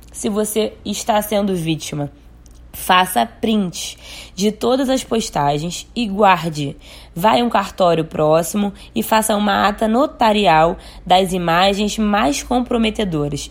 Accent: Brazilian